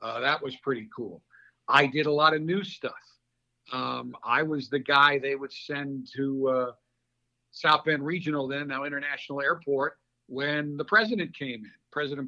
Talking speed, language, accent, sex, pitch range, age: 170 wpm, English, American, male, 130-175 Hz, 50-69